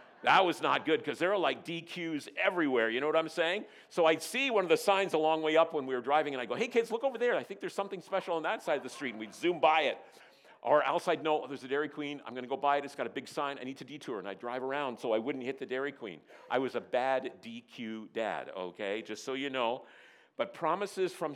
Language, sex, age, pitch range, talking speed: English, male, 50-69, 130-170 Hz, 285 wpm